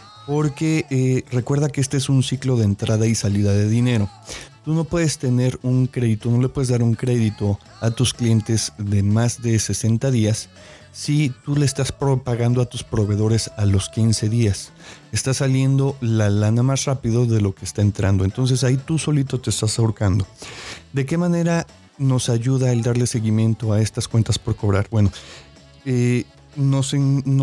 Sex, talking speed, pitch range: male, 175 wpm, 110-130 Hz